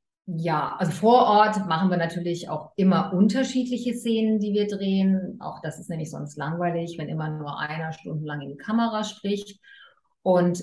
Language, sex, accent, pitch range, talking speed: German, female, German, 160-200 Hz, 170 wpm